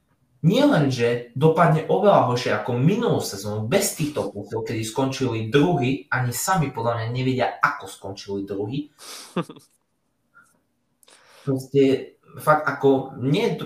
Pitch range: 110-135 Hz